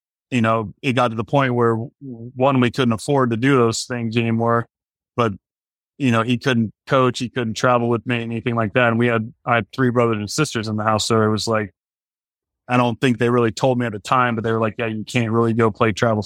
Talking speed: 250 wpm